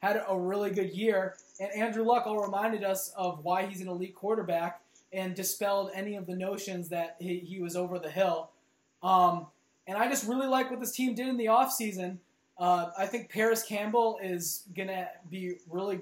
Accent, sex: American, male